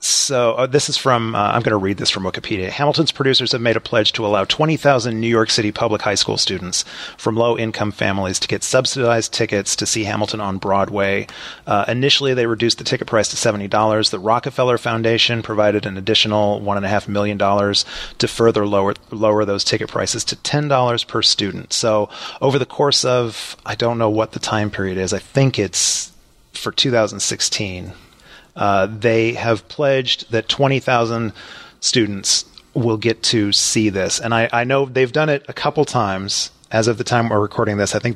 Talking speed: 185 wpm